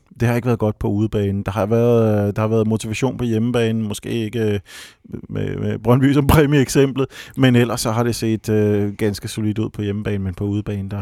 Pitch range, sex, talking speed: 105-120 Hz, male, 200 wpm